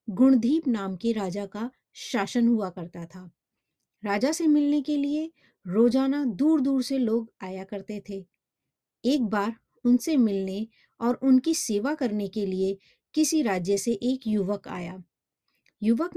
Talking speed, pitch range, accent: 95 wpm, 200-265 Hz, native